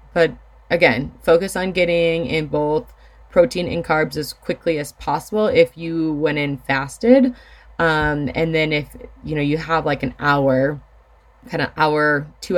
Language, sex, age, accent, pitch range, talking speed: English, female, 20-39, American, 135-180 Hz, 160 wpm